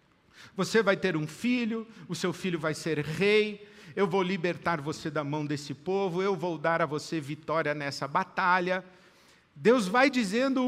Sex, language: male, Portuguese